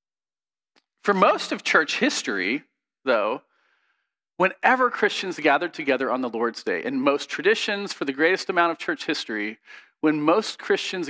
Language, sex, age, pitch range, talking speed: English, male, 40-59, 130-220 Hz, 145 wpm